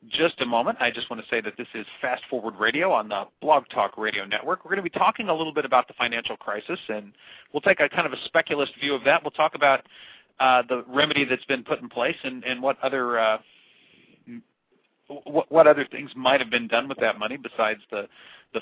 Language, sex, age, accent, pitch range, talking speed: English, male, 40-59, American, 115-150 Hz, 235 wpm